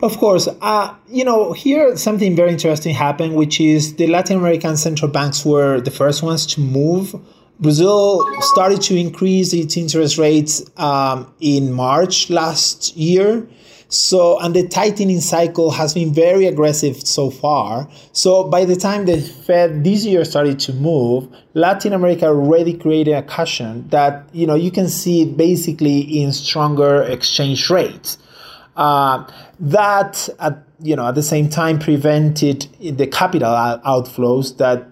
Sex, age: male, 30-49